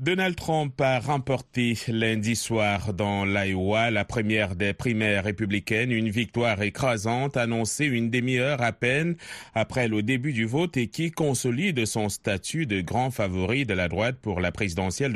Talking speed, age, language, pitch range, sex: 160 wpm, 30-49, French, 105-130 Hz, male